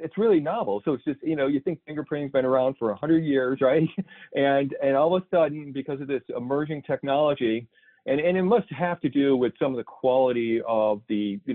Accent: American